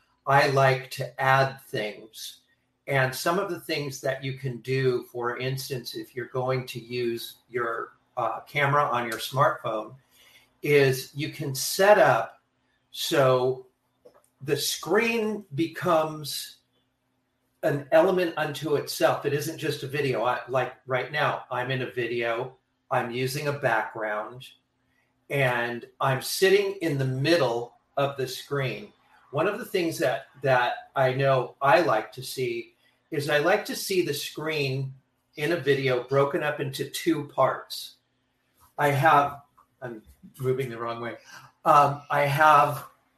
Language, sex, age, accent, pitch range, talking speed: English, male, 40-59, American, 125-155 Hz, 140 wpm